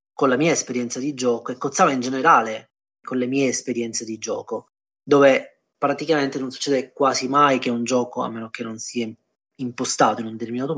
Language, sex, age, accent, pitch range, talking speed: Italian, male, 30-49, native, 115-135 Hz, 190 wpm